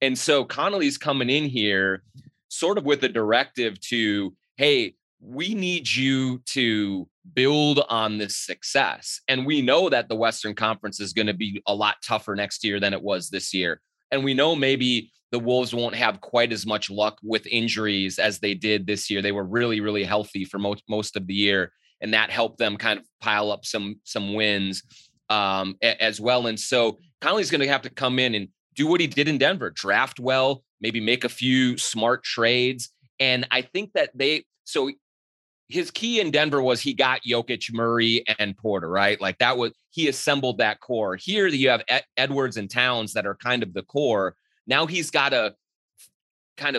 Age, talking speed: 30-49, 195 wpm